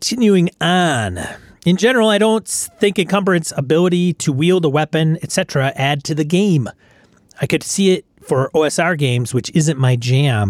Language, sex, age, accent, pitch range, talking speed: English, male, 40-59, American, 125-165 Hz, 165 wpm